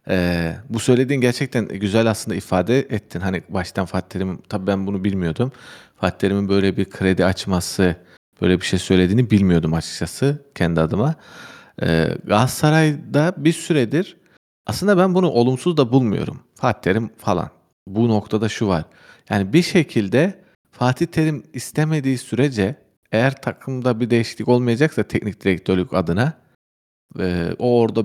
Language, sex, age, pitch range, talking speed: Turkish, male, 40-59, 95-130 Hz, 140 wpm